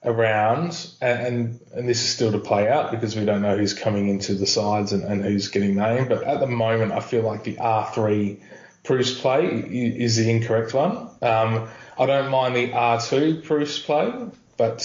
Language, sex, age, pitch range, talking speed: English, male, 20-39, 105-125 Hz, 190 wpm